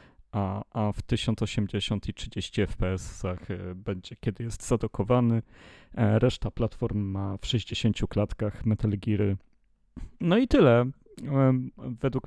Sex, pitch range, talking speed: male, 100-120 Hz, 110 wpm